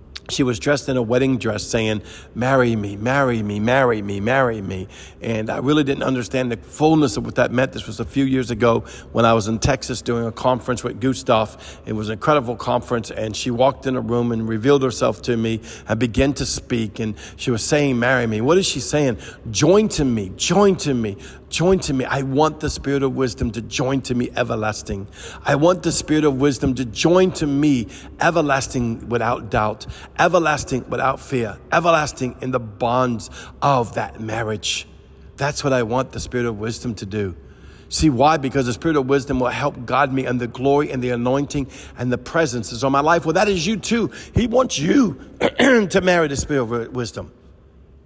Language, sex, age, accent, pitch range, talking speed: English, male, 50-69, American, 110-140 Hz, 205 wpm